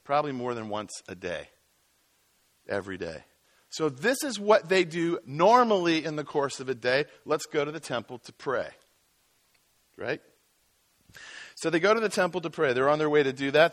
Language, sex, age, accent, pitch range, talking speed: English, male, 50-69, American, 135-165 Hz, 190 wpm